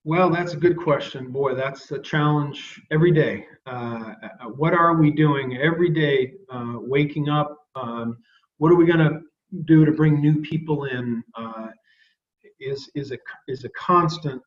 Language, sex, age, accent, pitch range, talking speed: English, male, 50-69, American, 130-170 Hz, 165 wpm